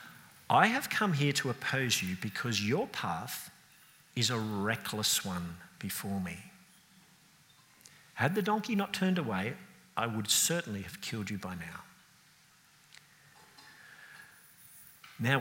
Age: 50-69